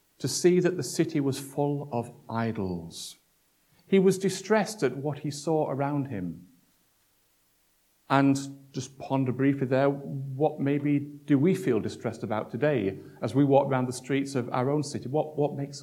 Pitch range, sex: 120-155 Hz, male